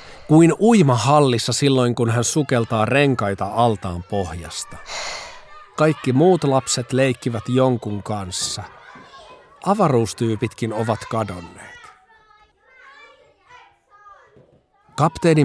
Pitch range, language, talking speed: 95-150 Hz, Finnish, 75 wpm